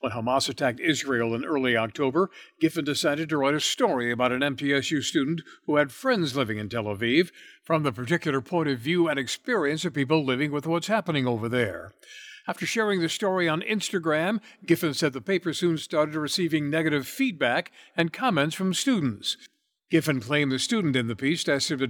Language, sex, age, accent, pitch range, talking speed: English, male, 60-79, American, 140-175 Hz, 190 wpm